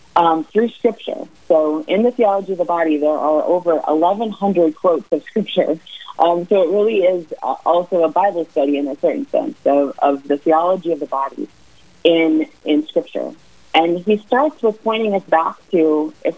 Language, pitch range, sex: English, 155-215 Hz, female